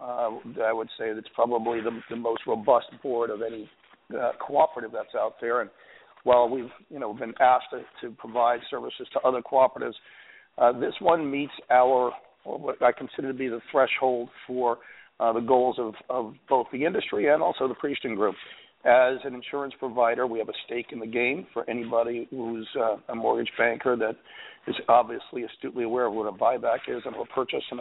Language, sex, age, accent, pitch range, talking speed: English, male, 50-69, American, 115-130 Hz, 195 wpm